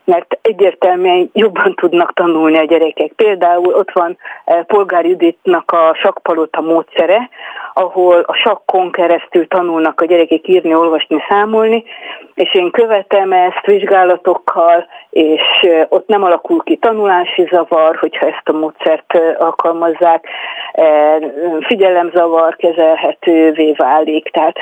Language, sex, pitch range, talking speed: Hungarian, female, 165-220 Hz, 120 wpm